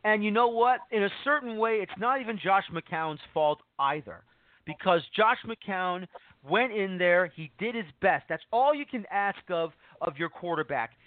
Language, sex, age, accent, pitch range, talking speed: English, male, 40-59, American, 170-220 Hz, 185 wpm